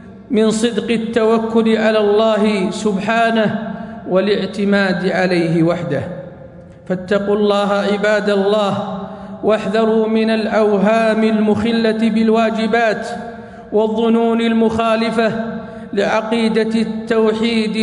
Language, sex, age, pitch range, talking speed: Arabic, male, 50-69, 185-220 Hz, 75 wpm